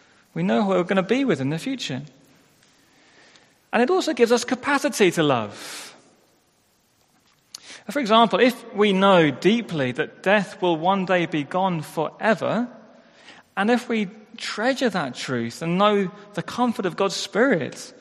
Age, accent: 30-49, British